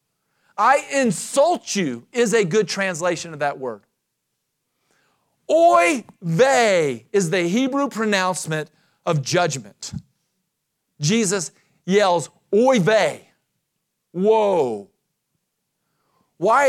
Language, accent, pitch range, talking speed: English, American, 180-245 Hz, 85 wpm